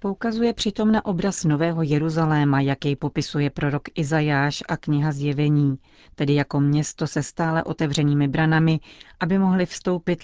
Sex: female